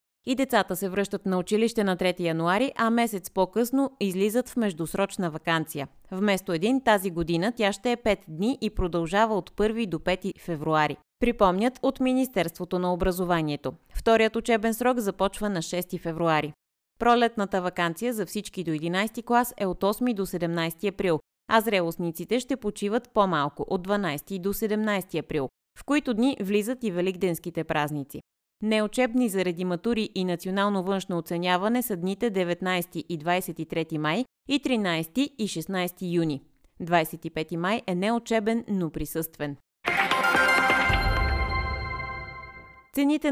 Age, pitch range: 20-39, 170-225 Hz